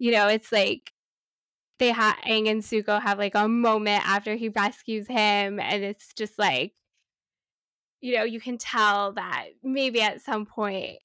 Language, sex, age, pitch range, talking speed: English, female, 10-29, 210-240 Hz, 170 wpm